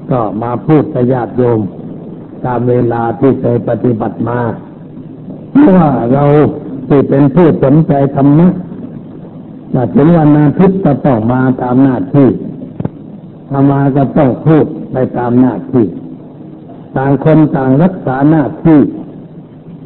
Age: 60-79